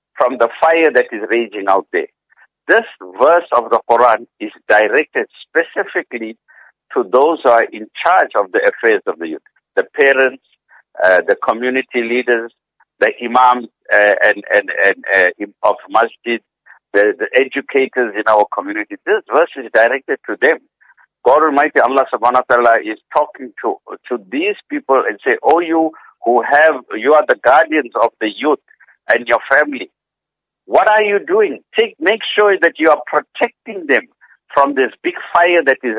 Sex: male